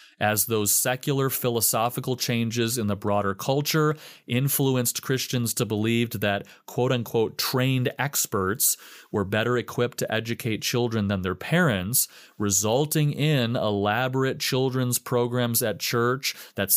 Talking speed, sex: 120 wpm, male